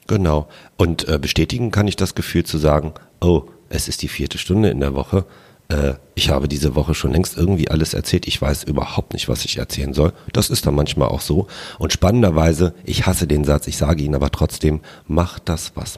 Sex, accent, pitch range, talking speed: male, German, 75-95 Hz, 215 wpm